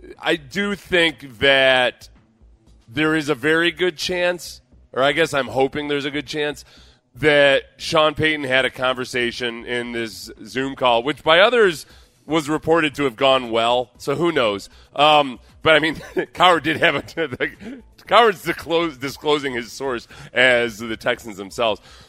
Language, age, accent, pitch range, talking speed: English, 30-49, American, 125-160 Hz, 155 wpm